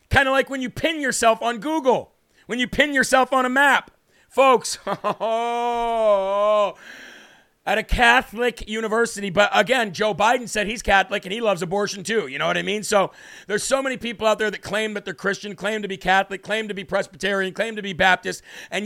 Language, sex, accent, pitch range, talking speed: English, male, American, 195-235 Hz, 200 wpm